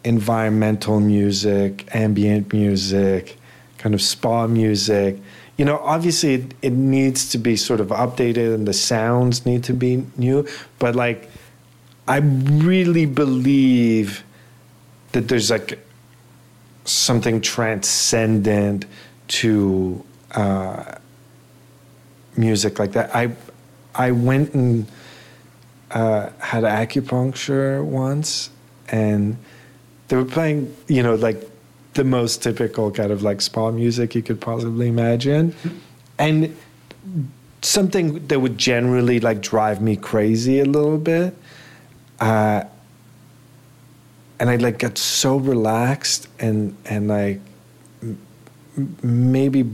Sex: male